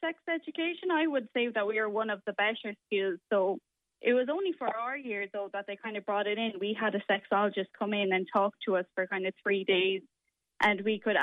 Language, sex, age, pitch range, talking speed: English, female, 10-29, 200-230 Hz, 245 wpm